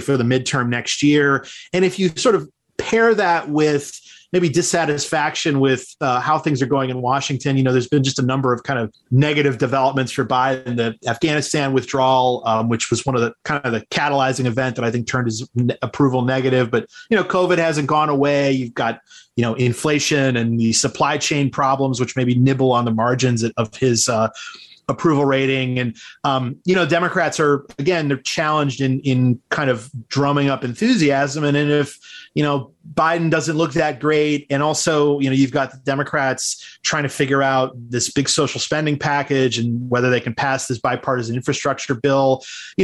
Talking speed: 200 wpm